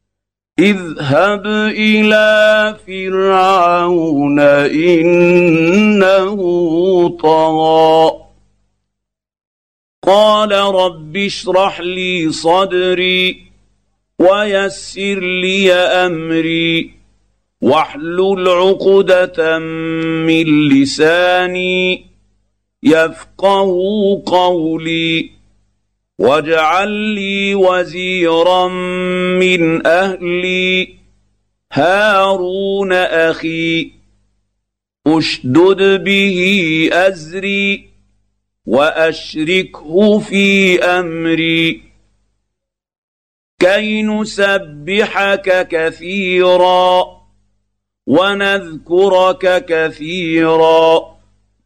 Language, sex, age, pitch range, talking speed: Arabic, male, 50-69, 150-190 Hz, 45 wpm